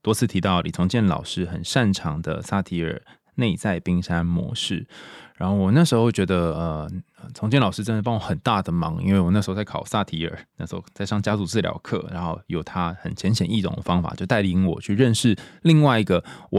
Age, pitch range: 20-39, 90-135 Hz